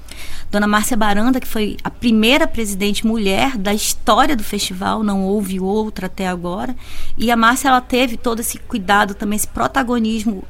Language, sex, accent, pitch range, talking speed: Portuguese, female, Brazilian, 190-230 Hz, 165 wpm